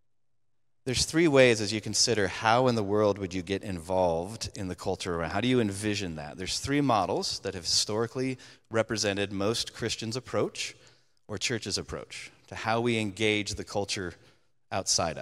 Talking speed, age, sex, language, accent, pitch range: 170 wpm, 30-49, male, English, American, 110-135 Hz